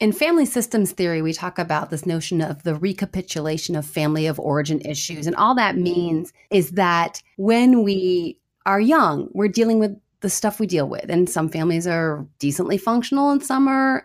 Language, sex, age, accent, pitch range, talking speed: English, female, 30-49, American, 180-245 Hz, 190 wpm